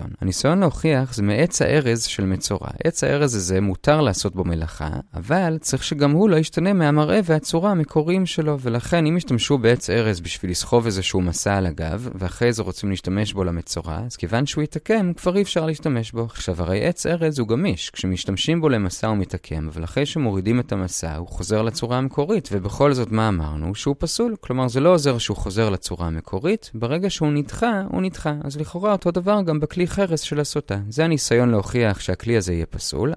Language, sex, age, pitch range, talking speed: Hebrew, male, 30-49, 100-155 Hz, 170 wpm